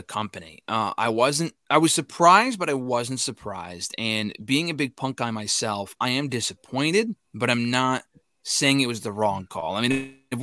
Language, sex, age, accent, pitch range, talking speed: English, male, 30-49, American, 115-145 Hz, 195 wpm